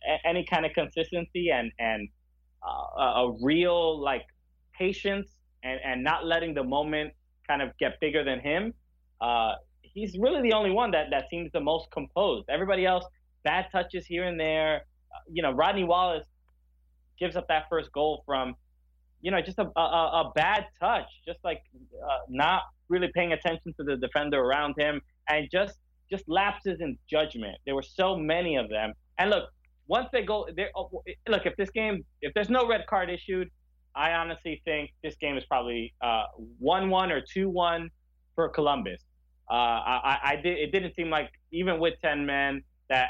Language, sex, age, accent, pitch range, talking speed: English, male, 20-39, American, 115-170 Hz, 175 wpm